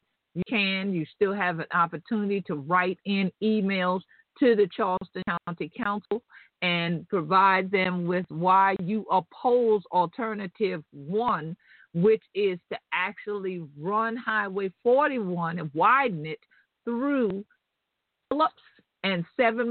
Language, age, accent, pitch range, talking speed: English, 50-69, American, 170-205 Hz, 115 wpm